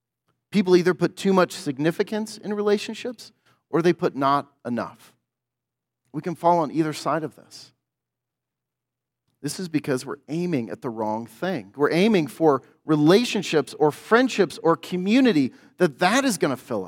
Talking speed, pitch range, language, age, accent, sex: 155 wpm, 140-185 Hz, English, 40-59, American, male